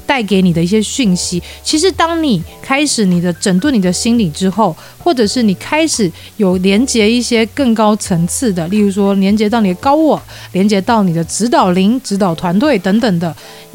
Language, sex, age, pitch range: Chinese, female, 30-49, 185-245 Hz